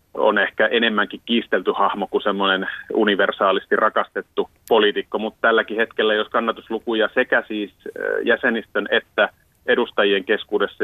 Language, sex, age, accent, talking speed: Finnish, male, 30-49, native, 115 wpm